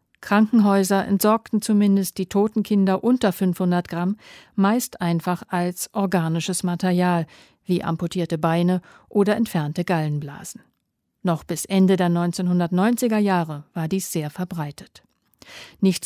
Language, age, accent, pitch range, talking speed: German, 50-69, German, 165-200 Hz, 115 wpm